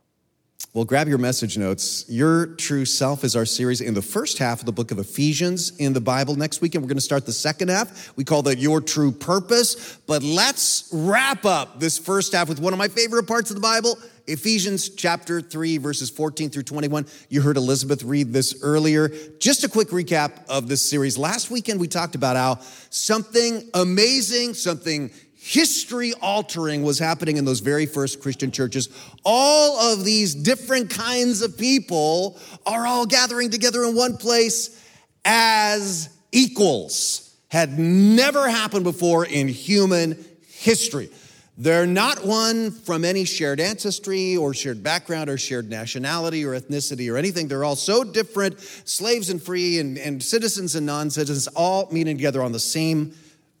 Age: 30-49